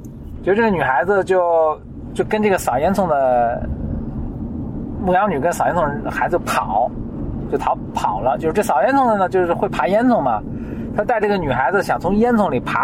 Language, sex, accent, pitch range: Chinese, male, native, 195-300 Hz